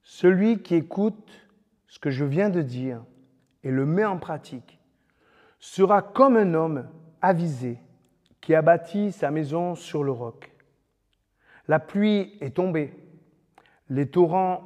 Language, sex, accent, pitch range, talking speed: French, male, French, 130-180 Hz, 135 wpm